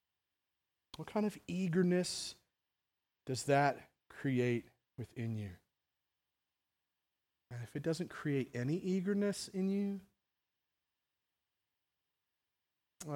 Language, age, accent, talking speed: English, 40-59, American, 85 wpm